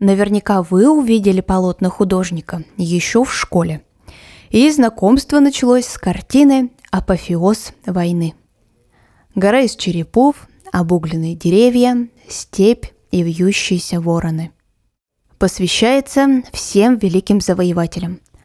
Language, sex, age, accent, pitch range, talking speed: Russian, female, 20-39, native, 175-230 Hz, 90 wpm